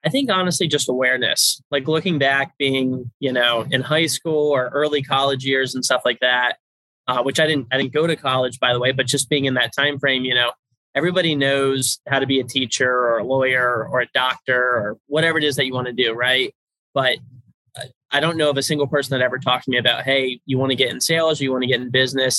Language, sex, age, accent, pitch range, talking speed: English, male, 20-39, American, 125-145 Hz, 250 wpm